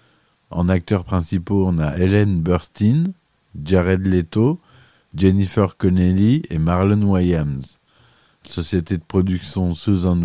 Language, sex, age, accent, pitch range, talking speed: French, male, 50-69, French, 85-105 Hz, 105 wpm